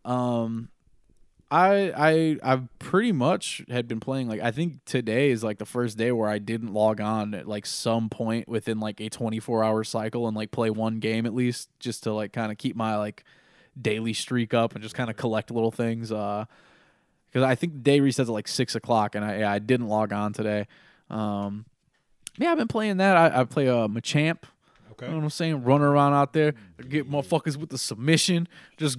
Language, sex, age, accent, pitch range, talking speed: English, male, 20-39, American, 115-155 Hz, 210 wpm